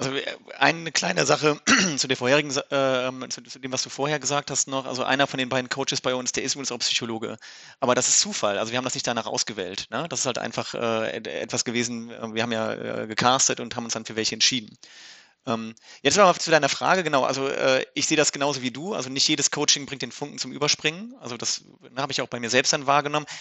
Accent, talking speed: German, 245 wpm